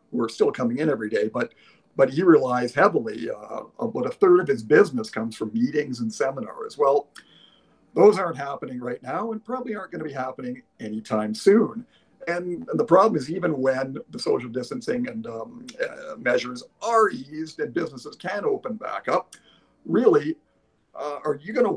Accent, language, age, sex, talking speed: American, English, 50-69, male, 180 wpm